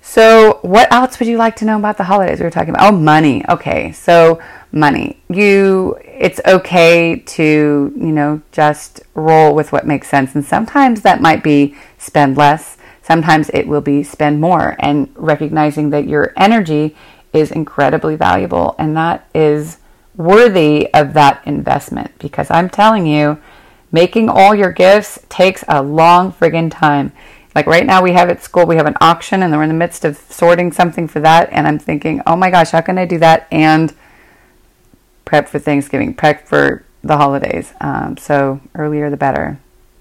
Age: 30-49